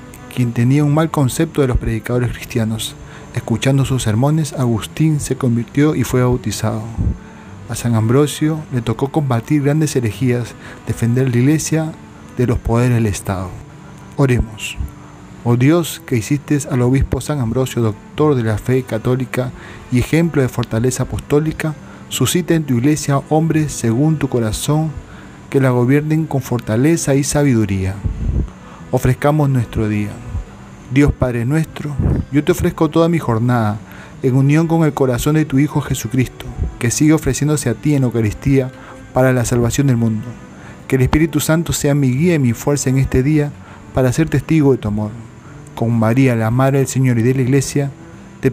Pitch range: 120-145 Hz